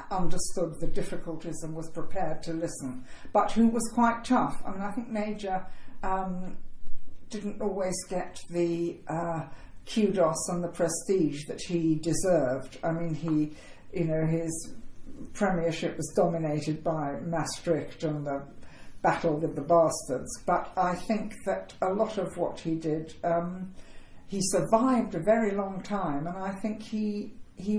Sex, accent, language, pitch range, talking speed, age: female, British, English, 155-200 Hz, 150 wpm, 60-79